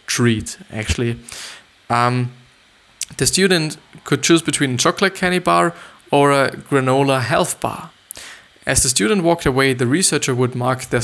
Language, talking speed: English, 145 wpm